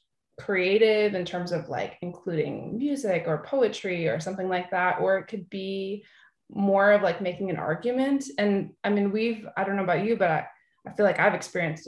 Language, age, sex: English, 20-39, female